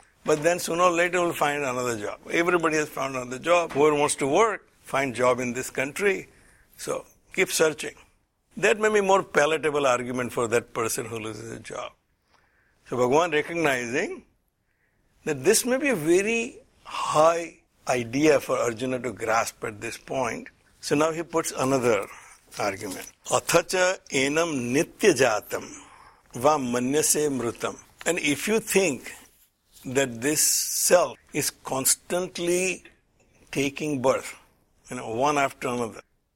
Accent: Indian